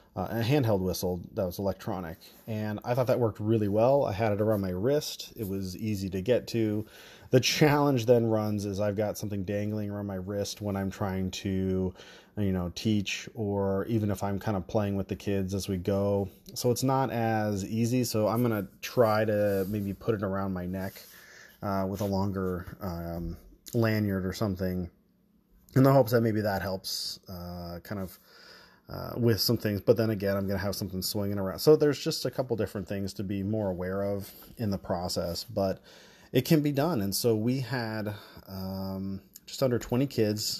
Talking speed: 200 wpm